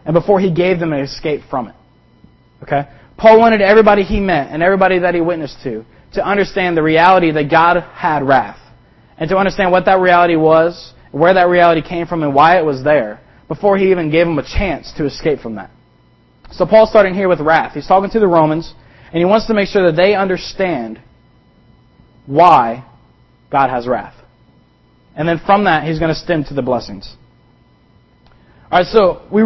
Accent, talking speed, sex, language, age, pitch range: American, 195 wpm, male, English, 20-39, 150-195 Hz